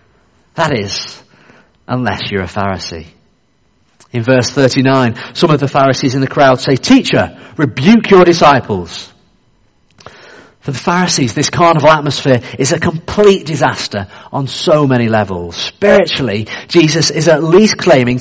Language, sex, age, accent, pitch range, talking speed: English, male, 40-59, British, 120-175 Hz, 135 wpm